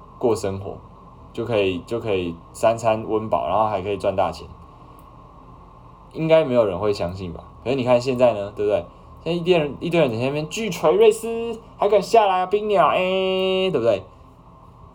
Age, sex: 20-39, male